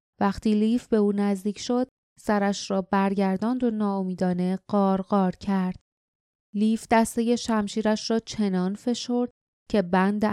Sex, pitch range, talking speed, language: female, 190-215 Hz, 120 wpm, Persian